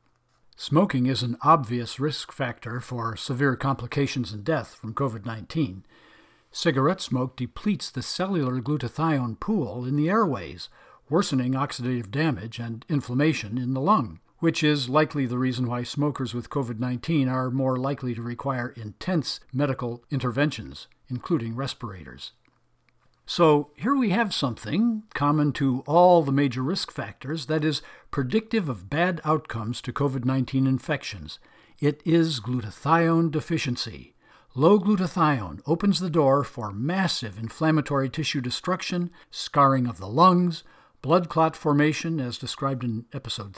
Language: English